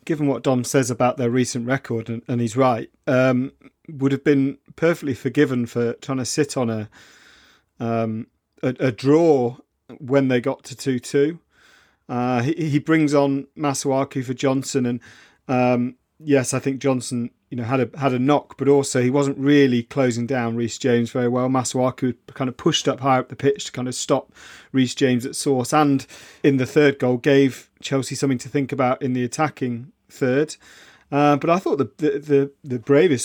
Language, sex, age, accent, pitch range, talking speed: English, male, 40-59, British, 125-150 Hz, 190 wpm